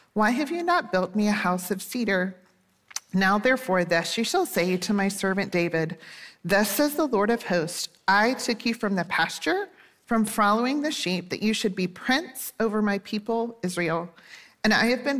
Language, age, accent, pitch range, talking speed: English, 40-59, American, 185-230 Hz, 195 wpm